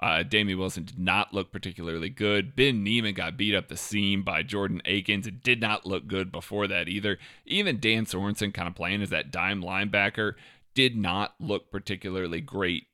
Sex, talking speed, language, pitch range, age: male, 190 wpm, English, 100-140 Hz, 30-49